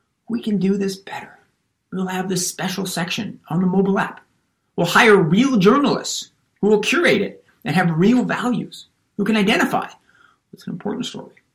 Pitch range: 175-225 Hz